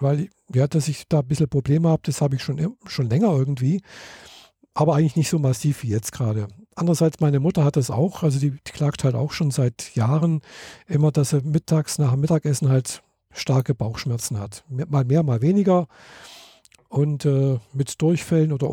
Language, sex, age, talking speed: German, male, 50-69, 190 wpm